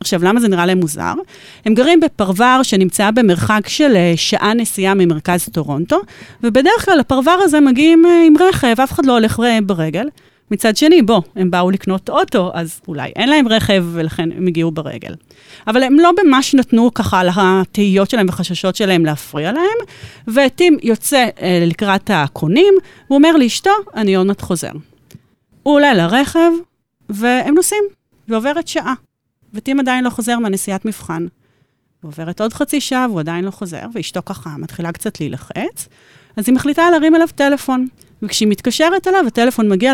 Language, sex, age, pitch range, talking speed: Hebrew, female, 30-49, 190-285 Hz, 95 wpm